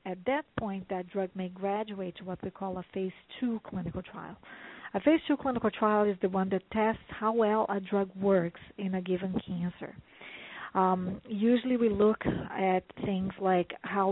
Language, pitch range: English, 185-215 Hz